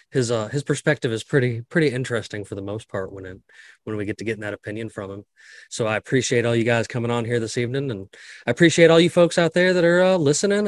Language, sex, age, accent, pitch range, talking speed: English, male, 20-39, American, 115-150 Hz, 255 wpm